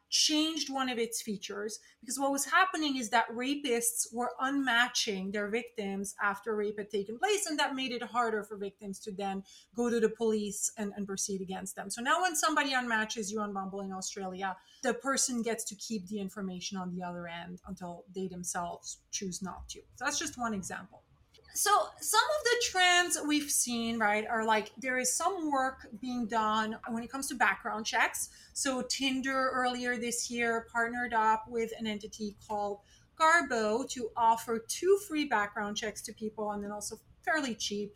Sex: female